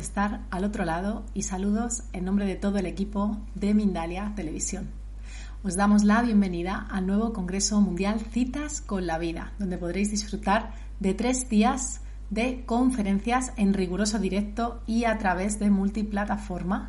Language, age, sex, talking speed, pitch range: Spanish, 30-49, female, 155 wpm, 185-220 Hz